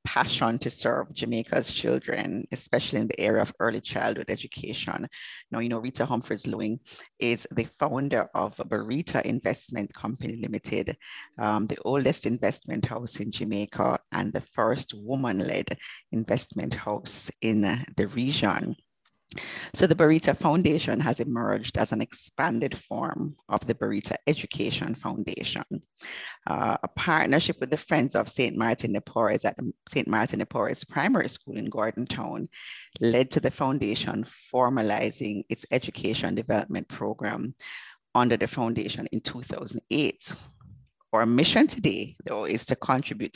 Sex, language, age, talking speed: female, English, 30-49, 135 wpm